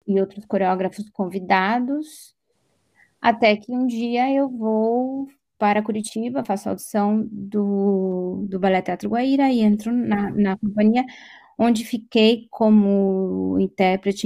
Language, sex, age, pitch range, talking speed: Portuguese, female, 20-39, 200-230 Hz, 120 wpm